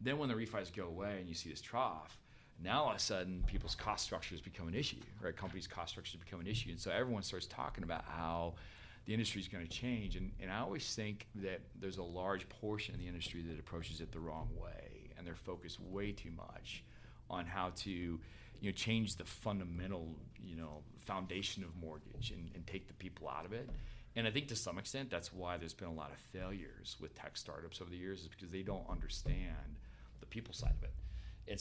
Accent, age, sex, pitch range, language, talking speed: American, 40-59, male, 80-100 Hz, English, 225 wpm